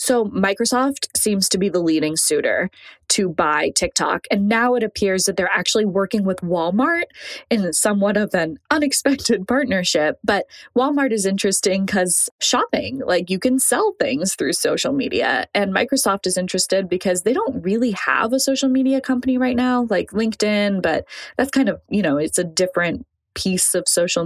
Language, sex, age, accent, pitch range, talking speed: English, female, 20-39, American, 185-250 Hz, 175 wpm